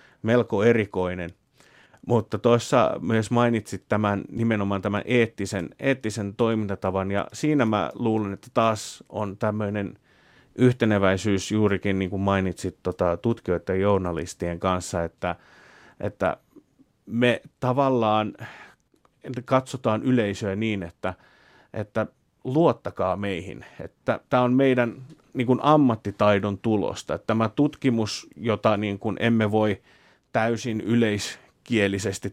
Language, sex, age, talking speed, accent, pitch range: Finnish, male, 30-49, 110 wpm, native, 100-120 Hz